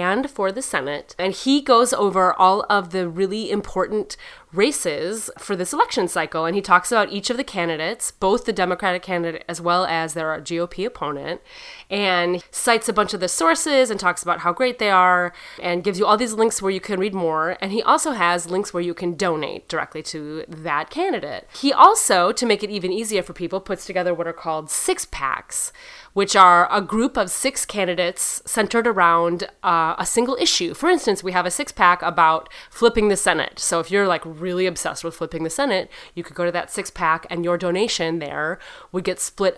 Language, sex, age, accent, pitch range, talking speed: English, female, 30-49, American, 175-240 Hz, 205 wpm